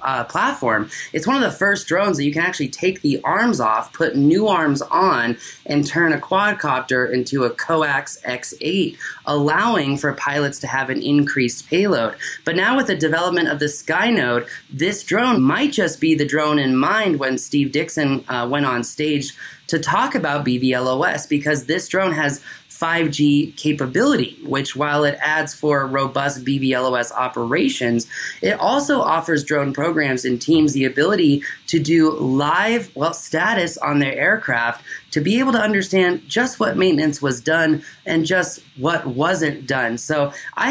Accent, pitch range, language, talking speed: American, 140-170 Hz, English, 165 wpm